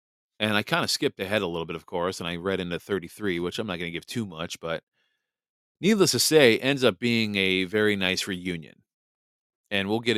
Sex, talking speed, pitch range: male, 225 wpm, 90-110 Hz